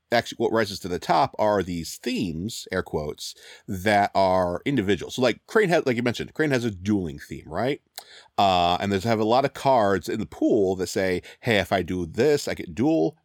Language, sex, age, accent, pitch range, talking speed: English, male, 40-59, American, 90-120 Hz, 215 wpm